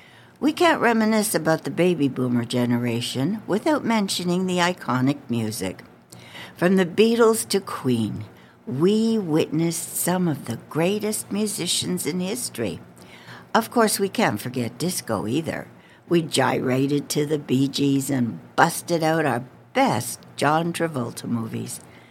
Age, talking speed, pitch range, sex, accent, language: 60-79, 130 wpm, 125-185 Hz, female, American, English